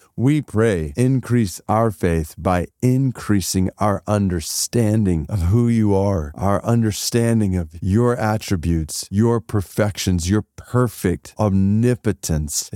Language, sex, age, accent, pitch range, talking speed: English, male, 40-59, American, 100-130 Hz, 110 wpm